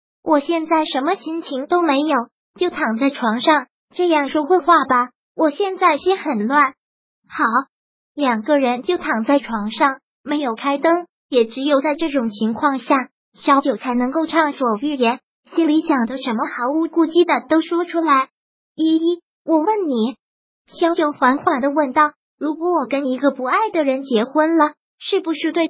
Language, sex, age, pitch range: Chinese, male, 20-39, 265-330 Hz